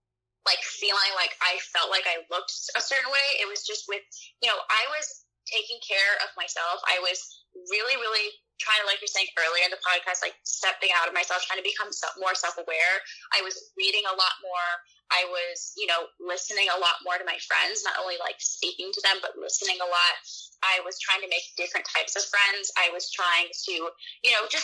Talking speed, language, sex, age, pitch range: 215 wpm, English, female, 10-29, 175-210 Hz